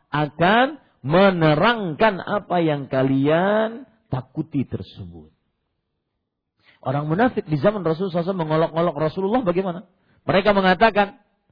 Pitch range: 145-235 Hz